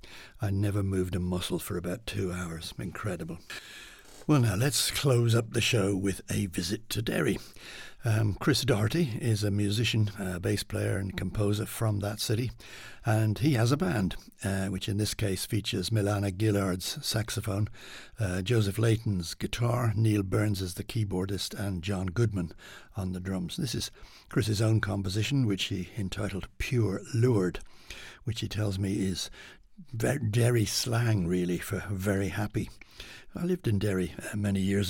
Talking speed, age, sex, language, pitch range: 160 wpm, 60-79, male, English, 100-115 Hz